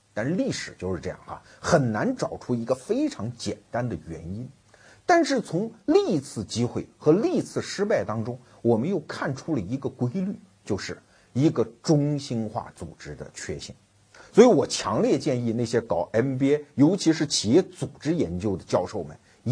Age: 50-69